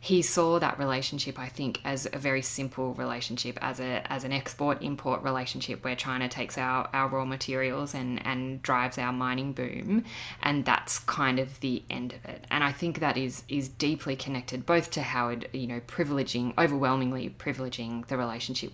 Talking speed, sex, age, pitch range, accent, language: 185 wpm, female, 10-29, 125-140 Hz, Australian, English